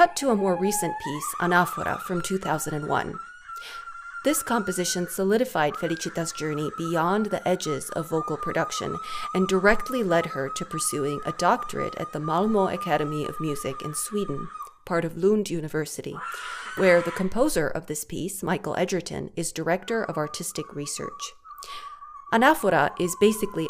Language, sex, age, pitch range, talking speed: English, female, 30-49, 155-225 Hz, 140 wpm